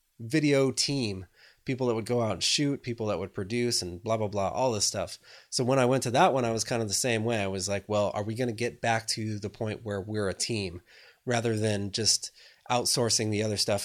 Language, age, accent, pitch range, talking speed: English, 20-39, American, 100-125 Hz, 250 wpm